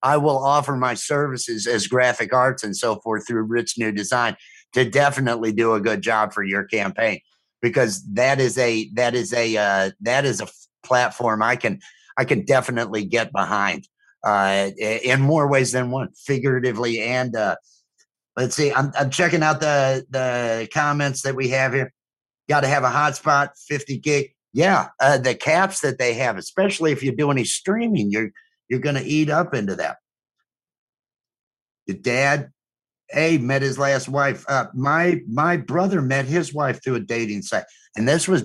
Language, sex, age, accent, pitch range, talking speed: English, male, 50-69, American, 115-145 Hz, 185 wpm